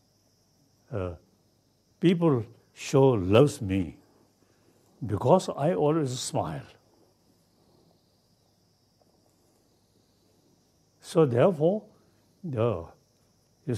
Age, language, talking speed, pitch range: 70-89, English, 60 wpm, 100-130 Hz